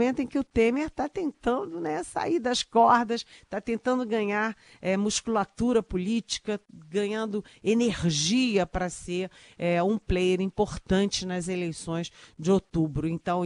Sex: female